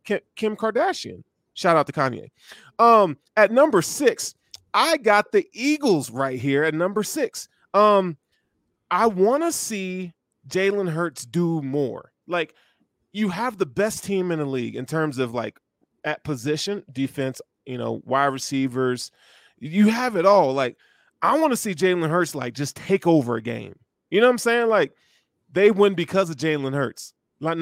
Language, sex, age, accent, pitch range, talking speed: English, male, 20-39, American, 140-195 Hz, 170 wpm